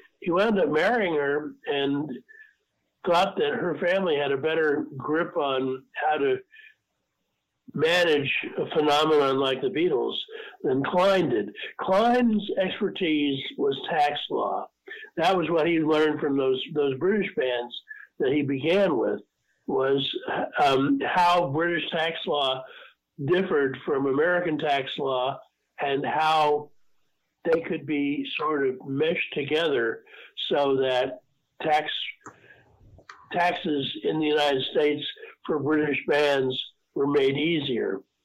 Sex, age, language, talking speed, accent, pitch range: male, 50-69, English, 125 wpm, American, 140-220 Hz